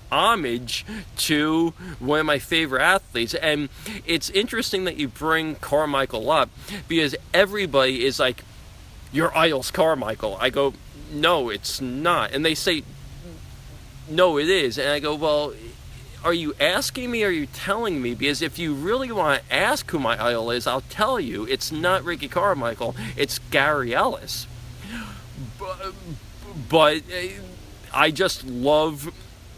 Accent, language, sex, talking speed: American, English, male, 145 wpm